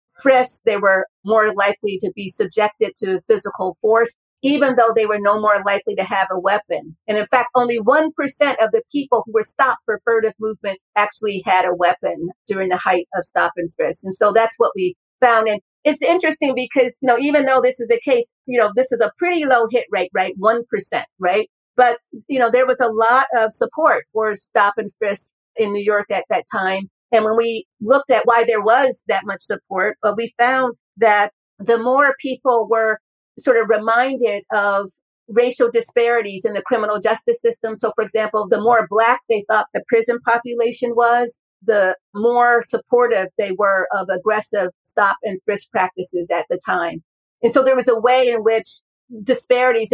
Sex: female